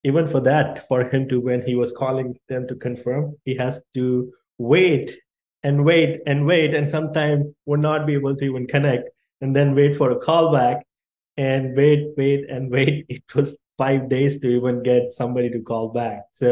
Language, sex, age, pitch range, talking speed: English, male, 20-39, 125-150 Hz, 195 wpm